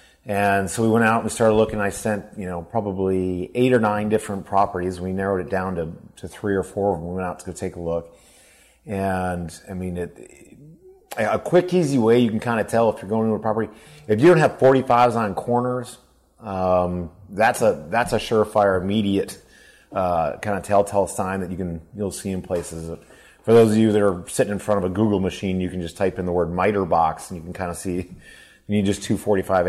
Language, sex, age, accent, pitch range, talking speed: English, male, 30-49, American, 90-110 Hz, 230 wpm